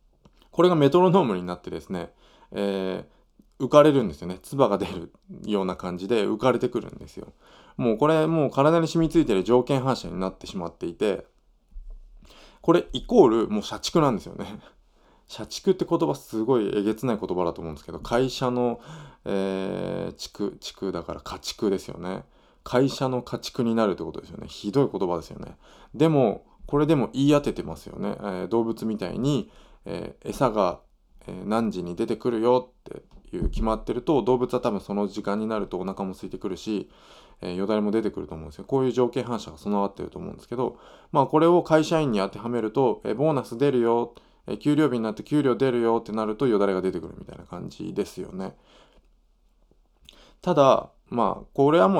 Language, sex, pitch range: Japanese, male, 100-140 Hz